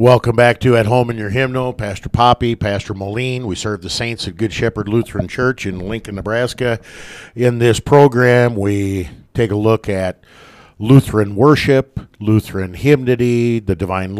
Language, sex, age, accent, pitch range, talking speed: English, male, 50-69, American, 100-120 Hz, 160 wpm